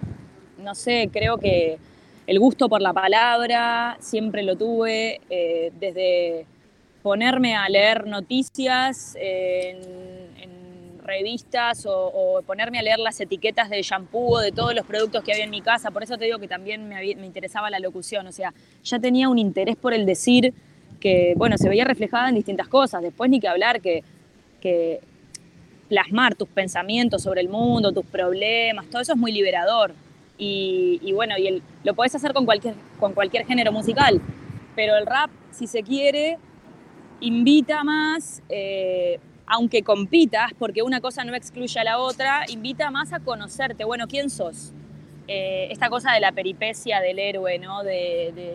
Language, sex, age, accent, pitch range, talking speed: Spanish, female, 20-39, Argentinian, 190-240 Hz, 175 wpm